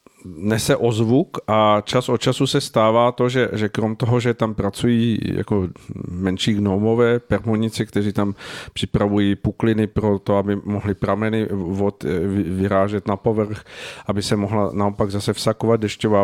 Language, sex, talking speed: Czech, male, 150 wpm